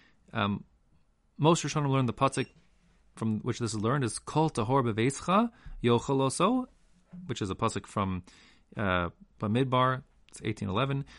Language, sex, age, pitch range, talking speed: English, male, 30-49, 105-140 Hz, 140 wpm